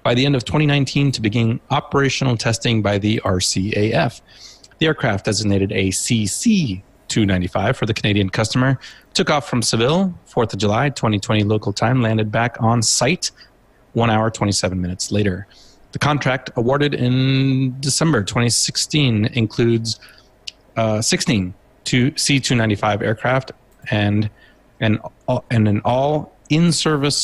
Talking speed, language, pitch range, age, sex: 125 wpm, English, 105-130 Hz, 30-49, male